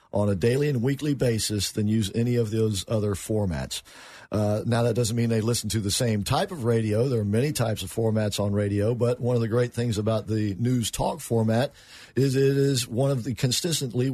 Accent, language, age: American, English, 50-69